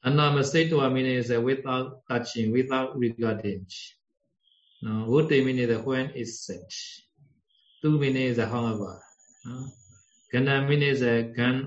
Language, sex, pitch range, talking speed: Vietnamese, male, 115-145 Hz, 160 wpm